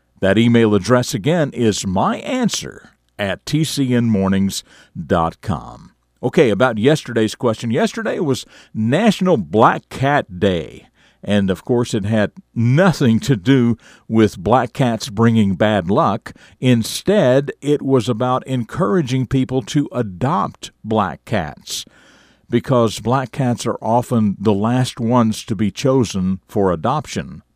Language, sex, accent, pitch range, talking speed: English, male, American, 105-135 Hz, 120 wpm